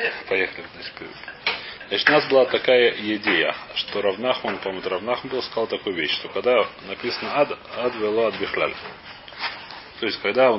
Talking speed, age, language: 140 wpm, 30-49, Russian